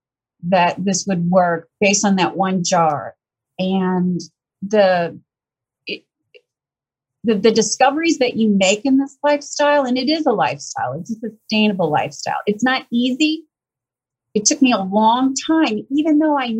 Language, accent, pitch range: English, American, 180-255 Hz